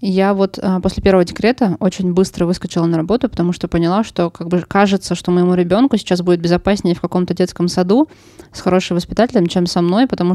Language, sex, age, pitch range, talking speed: Russian, female, 20-39, 175-195 Hz, 205 wpm